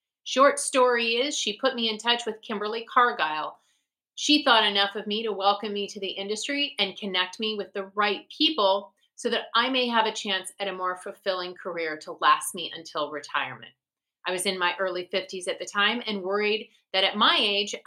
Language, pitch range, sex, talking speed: English, 185-245 Hz, female, 205 wpm